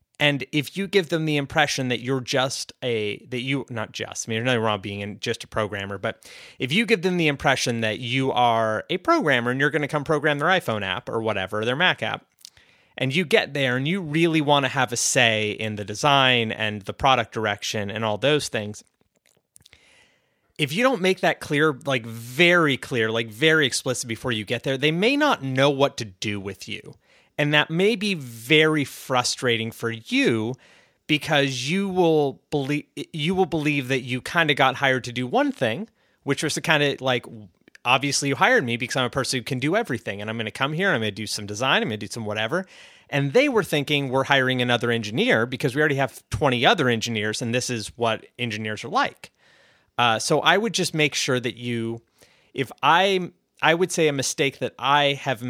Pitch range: 115-150 Hz